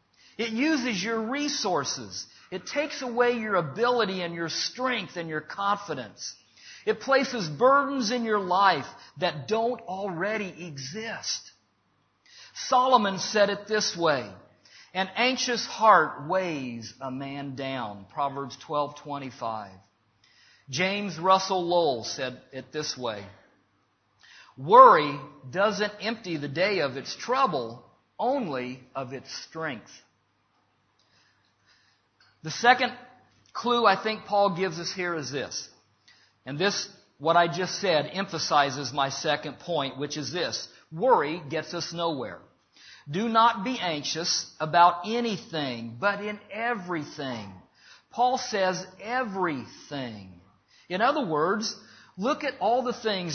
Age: 50-69